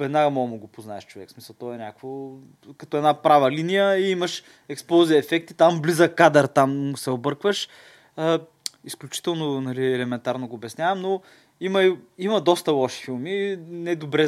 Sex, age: male, 20-39